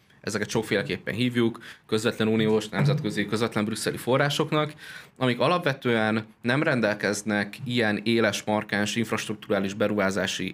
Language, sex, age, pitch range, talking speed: Hungarian, male, 20-39, 100-120 Hz, 100 wpm